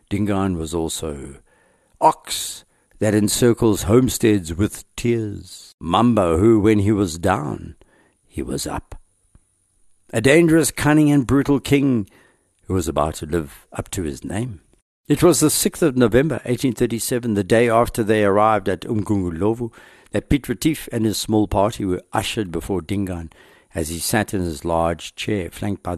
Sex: male